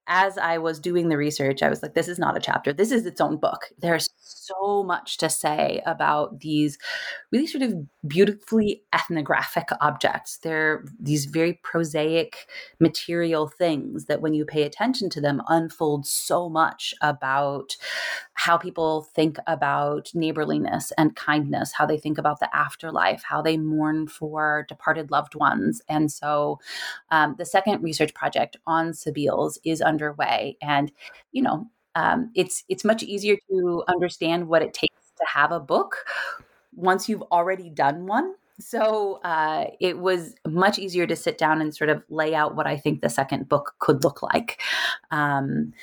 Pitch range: 155-195 Hz